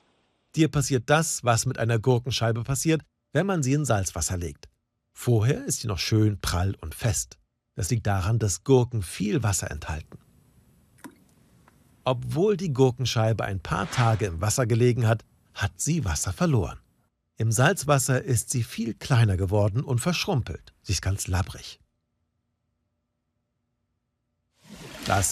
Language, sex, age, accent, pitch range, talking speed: German, male, 50-69, German, 105-145 Hz, 135 wpm